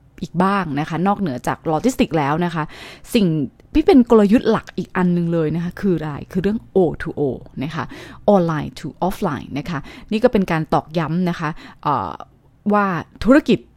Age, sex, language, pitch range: 20-39, female, English, 160-205 Hz